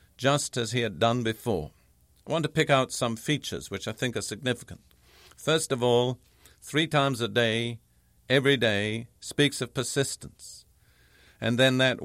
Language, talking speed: English, 165 wpm